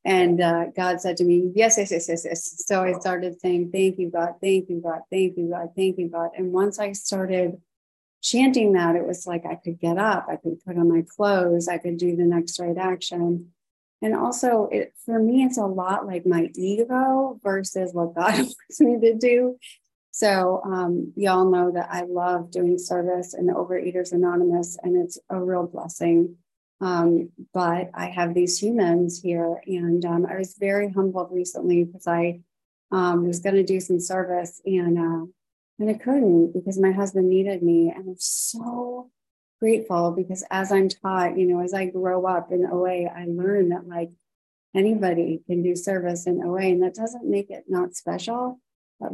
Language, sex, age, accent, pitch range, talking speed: English, female, 30-49, American, 175-195 Hz, 190 wpm